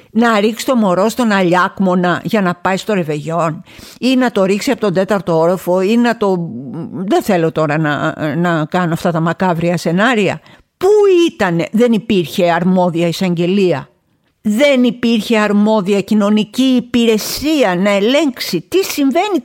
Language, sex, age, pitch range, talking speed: Greek, female, 50-69, 190-290 Hz, 145 wpm